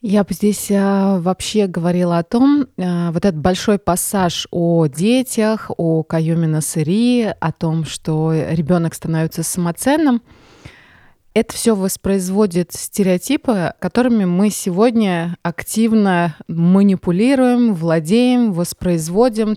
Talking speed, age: 100 wpm, 20-39